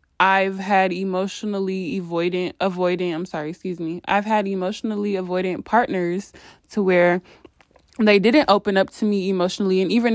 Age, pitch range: 20-39, 185-220 Hz